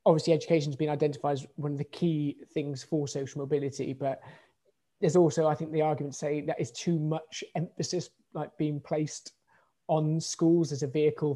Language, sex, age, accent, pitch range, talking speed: English, male, 20-39, British, 140-155 Hz, 185 wpm